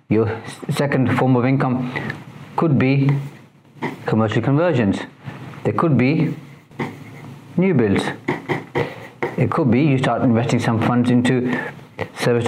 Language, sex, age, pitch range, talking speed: English, male, 40-59, 120-145 Hz, 115 wpm